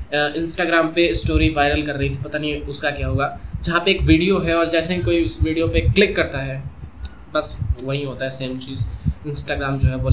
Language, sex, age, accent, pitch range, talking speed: Hindi, male, 20-39, native, 110-150 Hz, 225 wpm